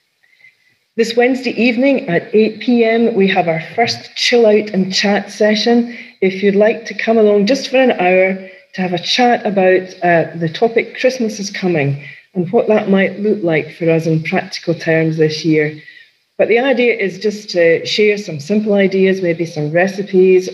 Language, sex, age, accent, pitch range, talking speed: English, female, 40-59, British, 160-210 Hz, 180 wpm